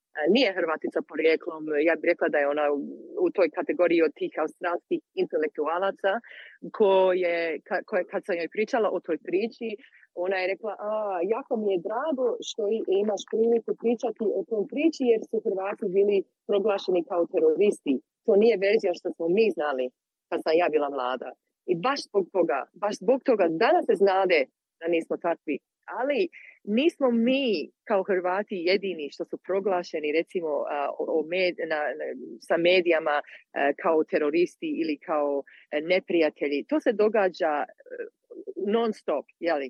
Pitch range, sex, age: 180-255 Hz, female, 30-49